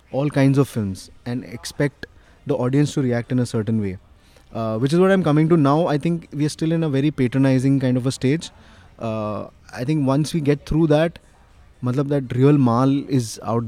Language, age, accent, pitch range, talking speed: Hindi, 20-39, native, 115-140 Hz, 215 wpm